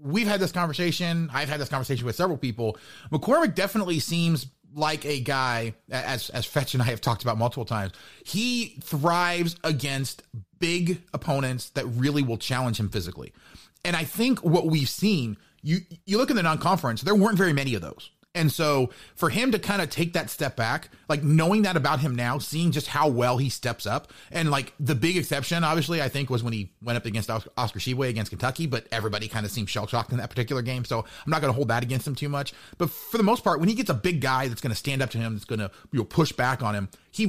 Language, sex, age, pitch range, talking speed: English, male, 30-49, 120-165 Hz, 235 wpm